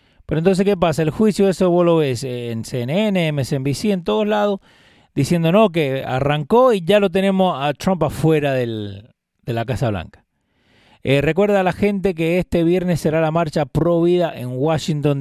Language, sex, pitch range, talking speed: Spanish, male, 125-175 Hz, 185 wpm